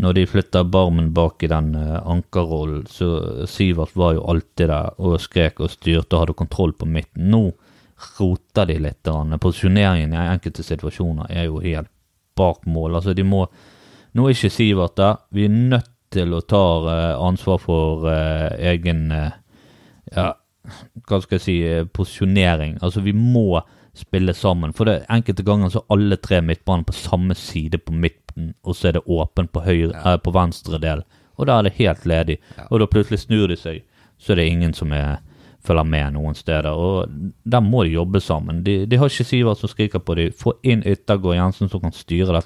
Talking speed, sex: 190 wpm, male